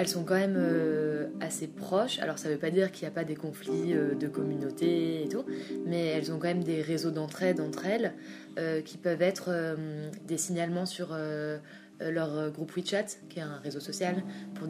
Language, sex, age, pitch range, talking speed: French, female, 20-39, 145-175 Hz, 190 wpm